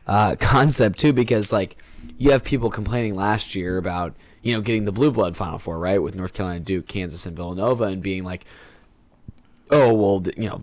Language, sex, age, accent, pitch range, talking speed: English, male, 10-29, American, 95-110 Hz, 200 wpm